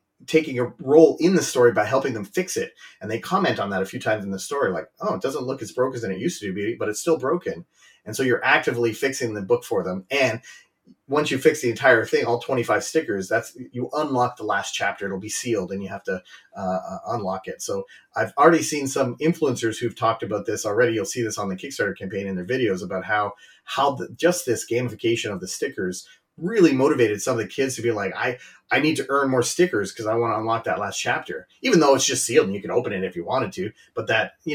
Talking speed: 255 wpm